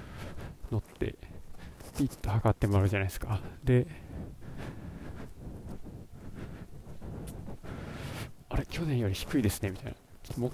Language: Japanese